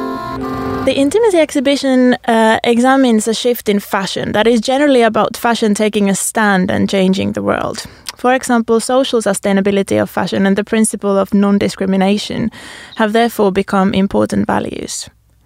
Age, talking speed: 20-39, 145 wpm